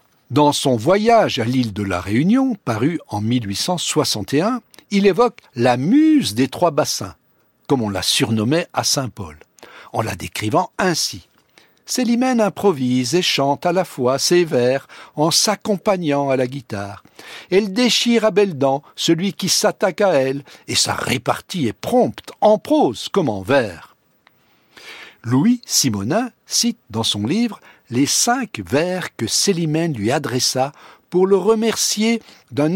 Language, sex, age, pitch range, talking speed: French, male, 60-79, 125-200 Hz, 145 wpm